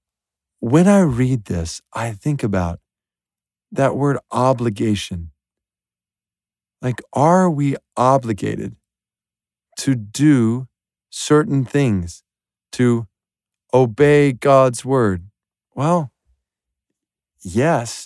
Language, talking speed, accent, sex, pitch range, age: English, 80 wpm, American, male, 105-160 Hz, 50-69